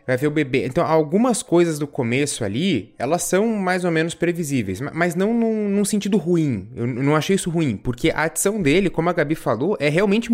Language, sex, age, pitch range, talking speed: Portuguese, male, 20-39, 130-180 Hz, 210 wpm